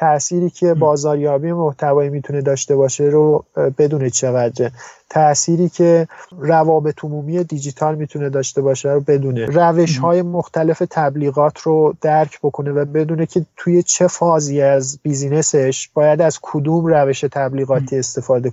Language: Persian